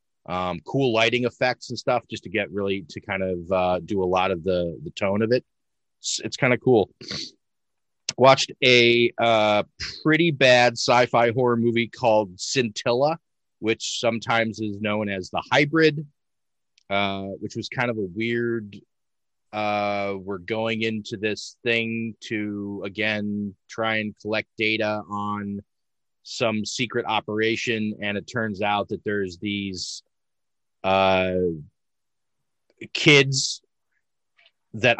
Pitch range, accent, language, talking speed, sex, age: 100-120 Hz, American, English, 135 wpm, male, 30-49